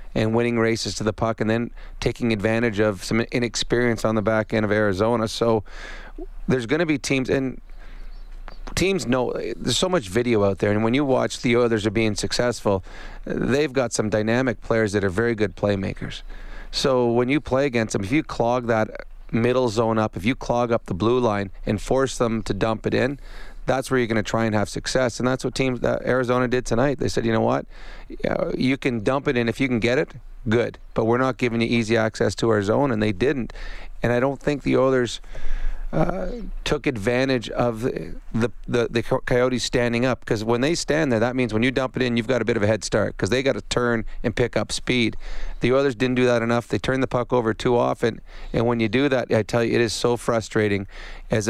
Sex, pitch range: male, 110-125 Hz